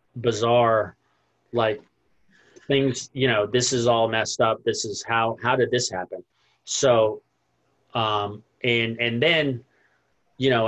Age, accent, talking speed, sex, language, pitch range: 40-59, American, 135 wpm, male, English, 105-125 Hz